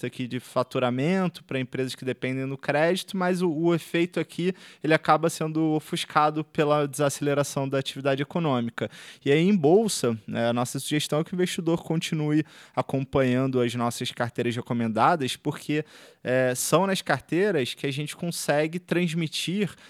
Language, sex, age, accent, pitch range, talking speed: Portuguese, male, 20-39, Brazilian, 125-160 Hz, 150 wpm